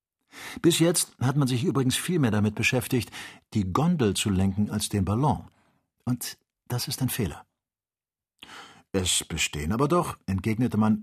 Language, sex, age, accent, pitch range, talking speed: German, male, 50-69, German, 95-135 Hz, 150 wpm